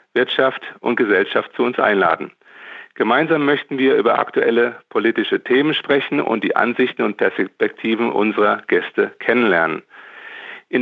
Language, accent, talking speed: English, German, 130 wpm